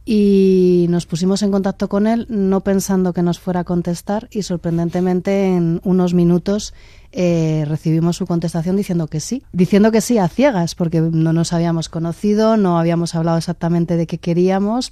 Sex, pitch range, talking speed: female, 165-195 Hz, 175 wpm